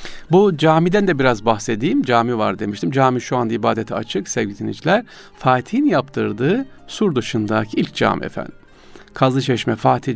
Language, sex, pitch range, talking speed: Turkish, male, 110-145 Hz, 140 wpm